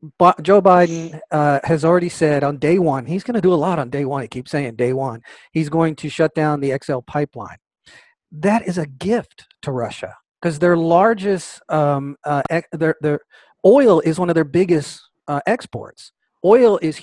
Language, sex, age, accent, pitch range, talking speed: English, male, 40-59, American, 140-180 Hz, 195 wpm